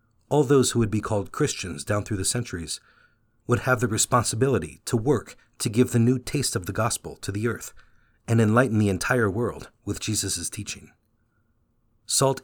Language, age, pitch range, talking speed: English, 40-59, 105-120 Hz, 180 wpm